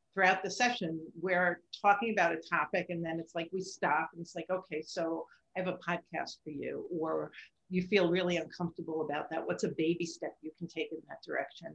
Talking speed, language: 215 wpm, English